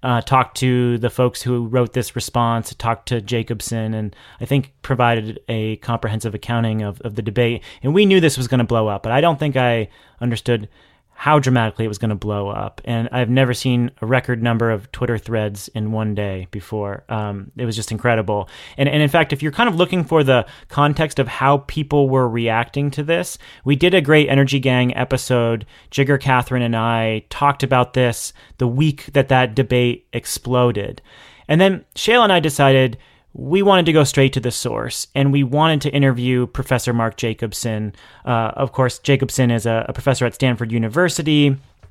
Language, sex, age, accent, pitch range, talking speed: English, male, 30-49, American, 115-135 Hz, 195 wpm